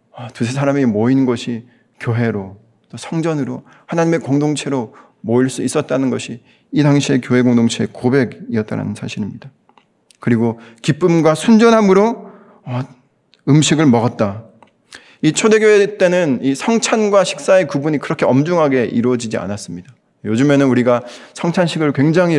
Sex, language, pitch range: male, Korean, 115-155 Hz